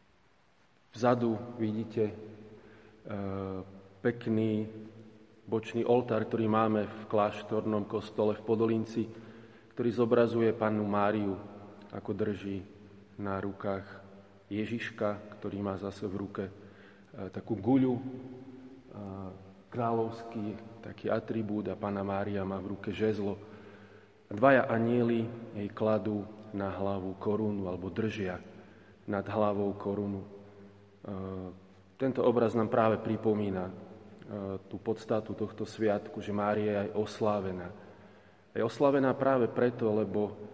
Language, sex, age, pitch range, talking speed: Slovak, male, 30-49, 100-110 Hz, 100 wpm